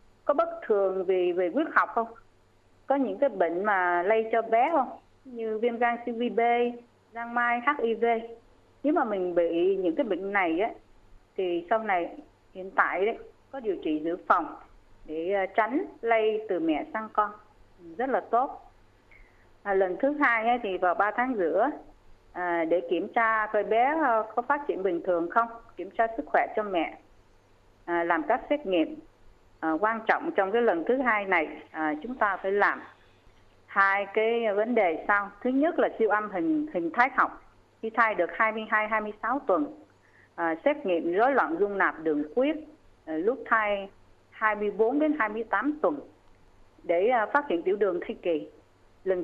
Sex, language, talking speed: female, Vietnamese, 175 wpm